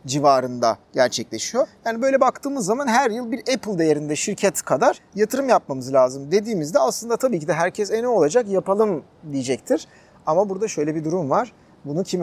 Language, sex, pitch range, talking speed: Turkish, male, 135-200 Hz, 170 wpm